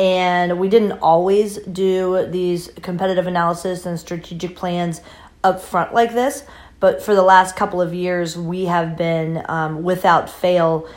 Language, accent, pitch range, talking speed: English, American, 165-185 Hz, 155 wpm